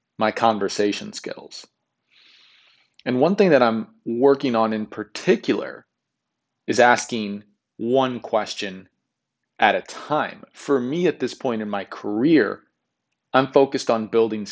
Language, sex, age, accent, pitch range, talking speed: English, male, 30-49, American, 105-125 Hz, 130 wpm